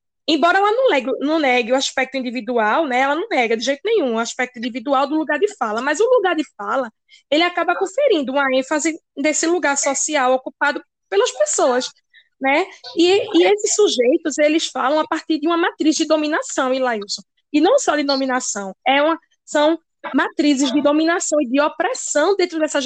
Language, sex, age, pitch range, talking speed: Portuguese, female, 20-39, 255-335 Hz, 170 wpm